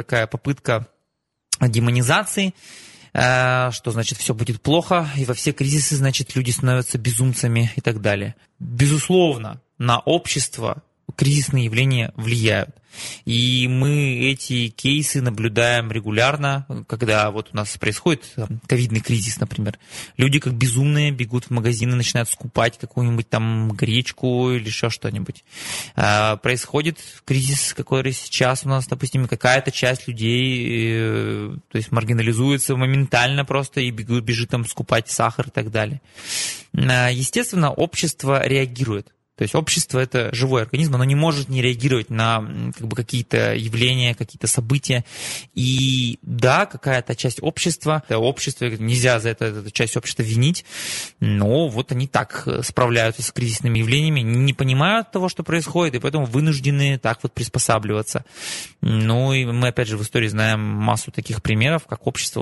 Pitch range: 115-140 Hz